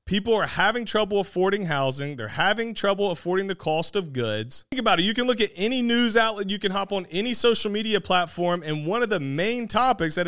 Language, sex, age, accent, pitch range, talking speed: English, male, 40-59, American, 160-220 Hz, 230 wpm